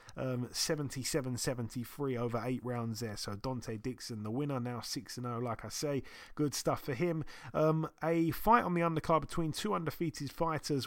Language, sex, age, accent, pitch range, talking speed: English, male, 30-49, British, 130-165 Hz, 175 wpm